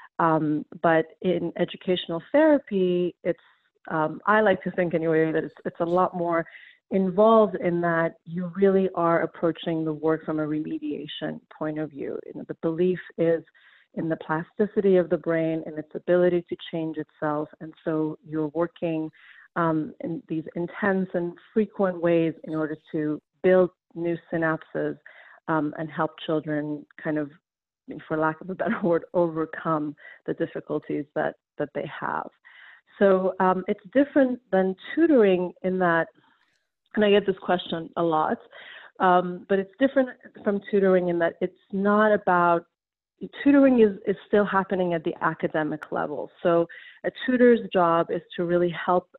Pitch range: 160-190 Hz